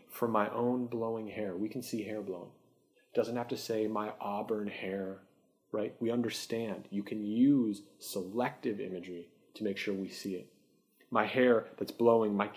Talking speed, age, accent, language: 170 wpm, 30-49, American, English